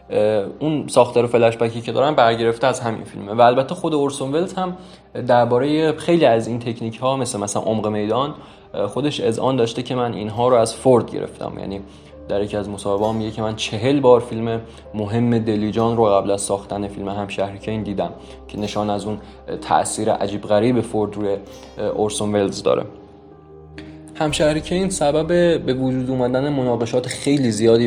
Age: 20-39